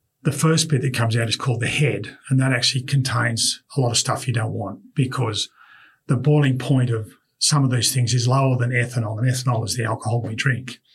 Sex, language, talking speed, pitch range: male, English, 225 wpm, 120-135 Hz